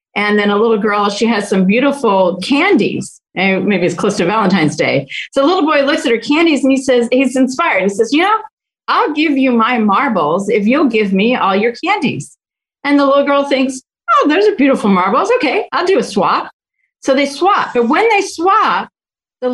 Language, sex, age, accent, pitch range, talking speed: English, female, 40-59, American, 200-280 Hz, 210 wpm